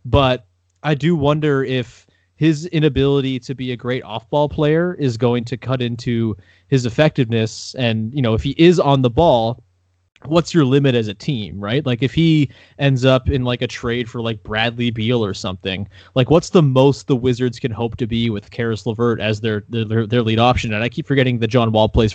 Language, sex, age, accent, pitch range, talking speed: English, male, 20-39, American, 115-150 Hz, 210 wpm